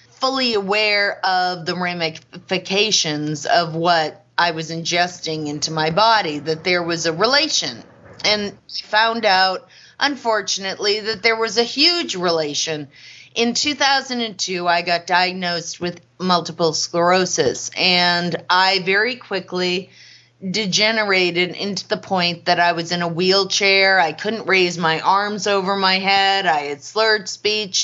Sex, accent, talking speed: female, American, 135 wpm